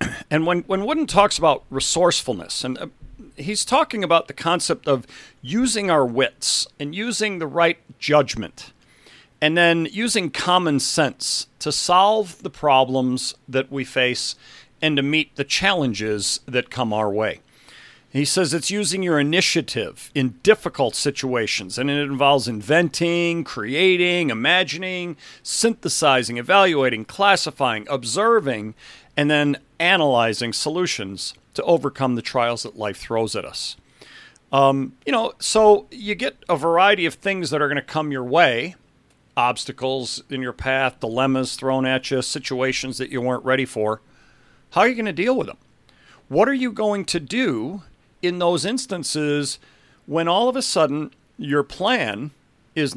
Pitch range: 130-175 Hz